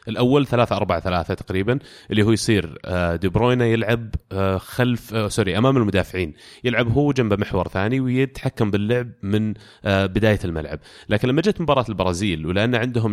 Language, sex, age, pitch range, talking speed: Arabic, male, 30-49, 95-120 Hz, 145 wpm